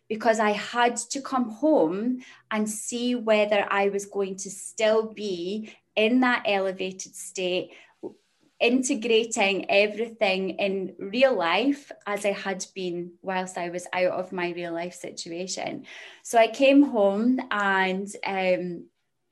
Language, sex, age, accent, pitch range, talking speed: English, female, 20-39, British, 195-265 Hz, 135 wpm